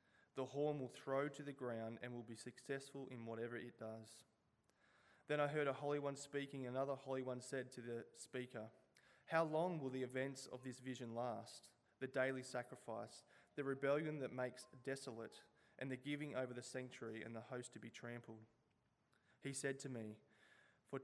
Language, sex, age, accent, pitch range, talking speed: English, male, 20-39, Australian, 115-140 Hz, 180 wpm